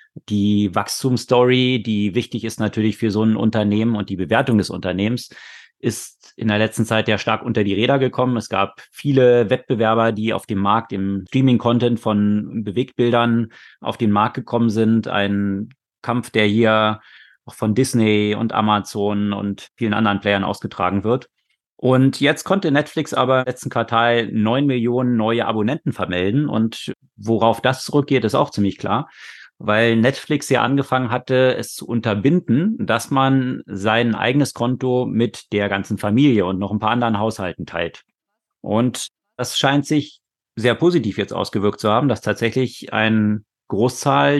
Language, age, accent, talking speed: German, 30-49, German, 160 wpm